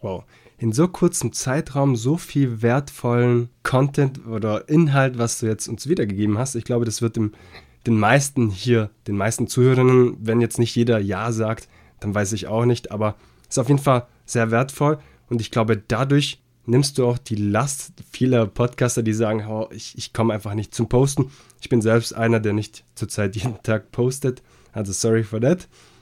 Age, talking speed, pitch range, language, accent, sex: 20-39, 185 wpm, 105-125 Hz, German, German, male